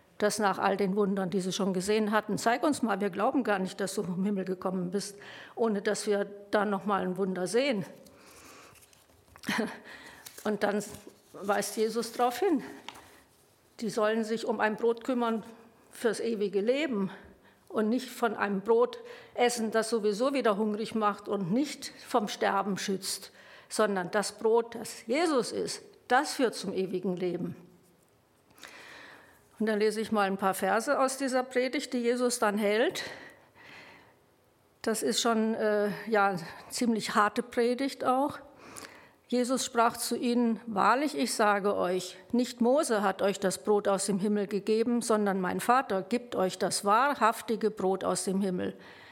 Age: 50-69